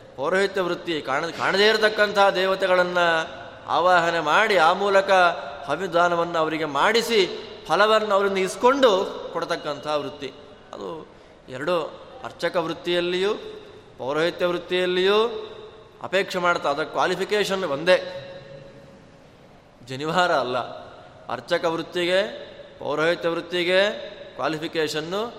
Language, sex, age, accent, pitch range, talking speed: Kannada, male, 20-39, native, 155-205 Hz, 85 wpm